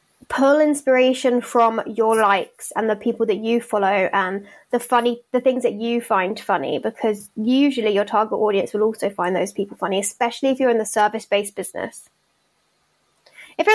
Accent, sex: British, female